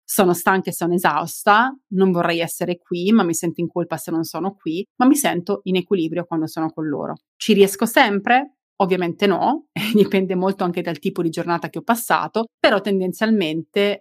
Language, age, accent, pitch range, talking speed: Italian, 30-49, native, 170-205 Hz, 195 wpm